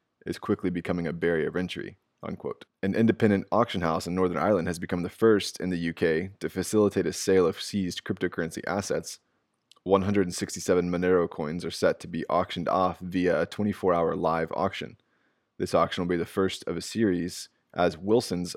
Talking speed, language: 175 wpm, English